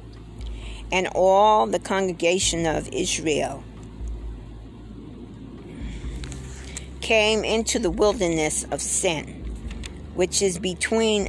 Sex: female